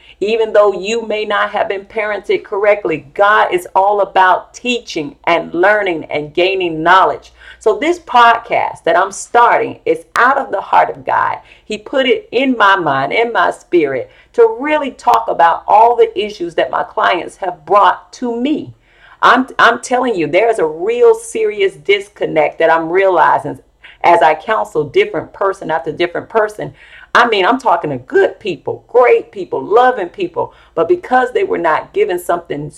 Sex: female